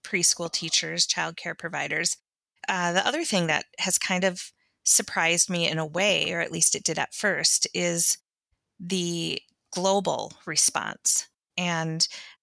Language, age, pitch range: English, 20-39, 165-190 Hz